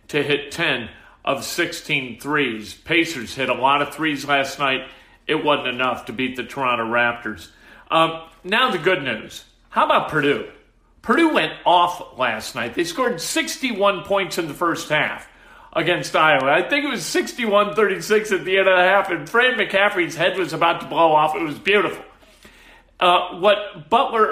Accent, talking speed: American, 180 wpm